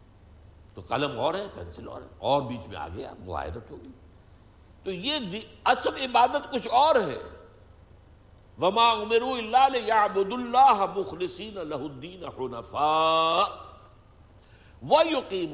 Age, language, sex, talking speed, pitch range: 60-79, Urdu, male, 70 wpm, 95-130 Hz